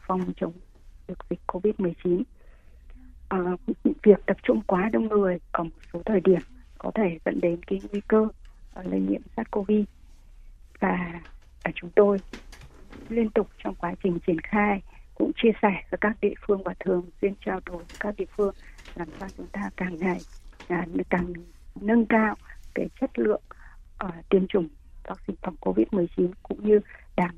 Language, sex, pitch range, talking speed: Vietnamese, female, 170-205 Hz, 175 wpm